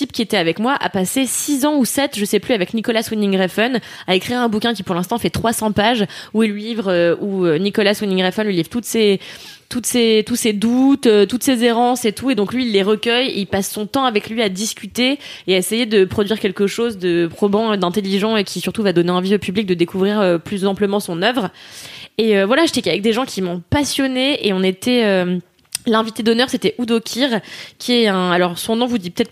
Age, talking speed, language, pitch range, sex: 20-39, 235 wpm, French, 190-230 Hz, female